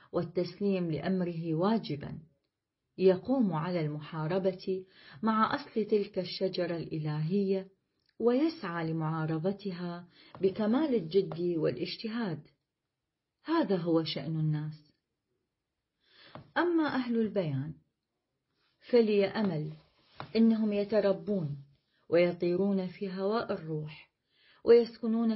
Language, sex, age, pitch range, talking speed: Arabic, female, 40-59, 160-210 Hz, 75 wpm